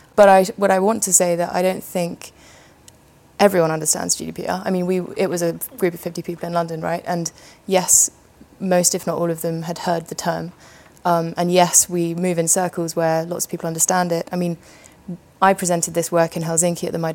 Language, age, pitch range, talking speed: English, 20-39, 165-185 Hz, 220 wpm